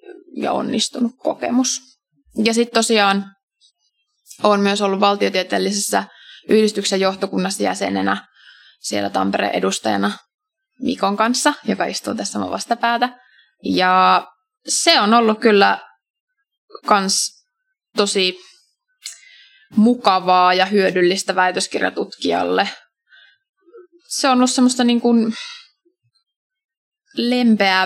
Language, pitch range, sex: Finnish, 185-280 Hz, female